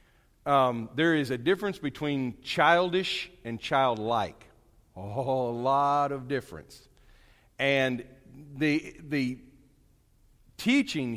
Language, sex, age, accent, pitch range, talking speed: English, male, 50-69, American, 110-150 Hz, 95 wpm